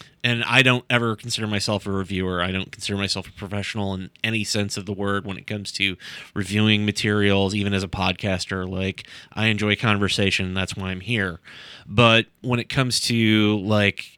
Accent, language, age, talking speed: American, English, 30-49, 185 wpm